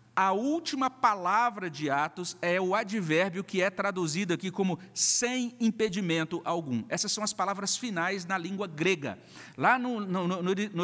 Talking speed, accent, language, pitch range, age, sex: 150 wpm, Brazilian, Portuguese, 135-185 Hz, 50-69, male